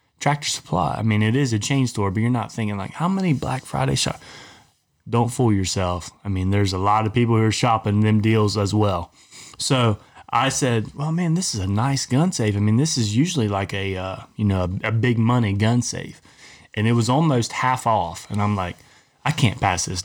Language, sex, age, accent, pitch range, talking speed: English, male, 20-39, American, 100-120 Hz, 225 wpm